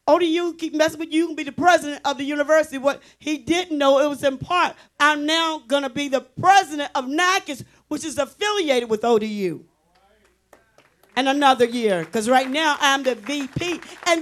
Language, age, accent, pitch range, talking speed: English, 40-59, American, 260-350 Hz, 185 wpm